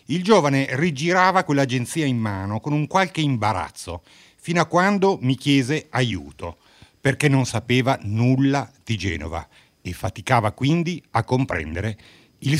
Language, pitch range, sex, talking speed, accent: Italian, 100-135 Hz, male, 135 wpm, native